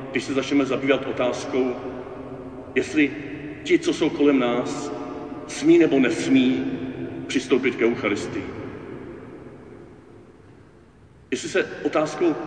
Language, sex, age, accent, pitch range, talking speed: Czech, male, 50-69, native, 135-155 Hz, 95 wpm